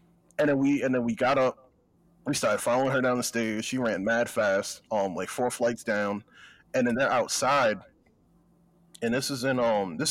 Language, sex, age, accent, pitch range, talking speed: English, male, 30-49, American, 120-155 Hz, 200 wpm